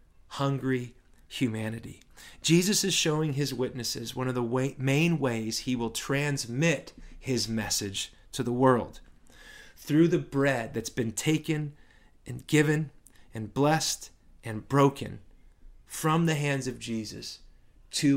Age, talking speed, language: 30-49, 125 wpm, English